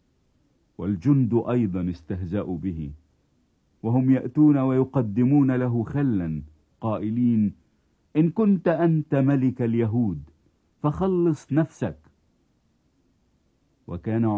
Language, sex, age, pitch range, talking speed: English, male, 50-69, 95-135 Hz, 75 wpm